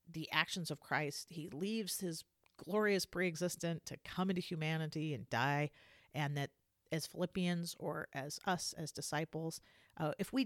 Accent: American